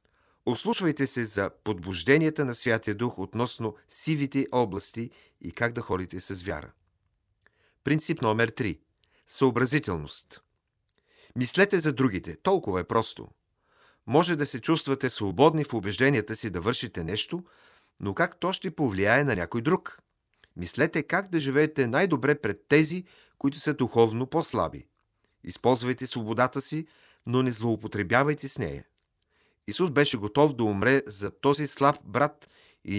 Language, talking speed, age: Bulgarian, 135 wpm, 40-59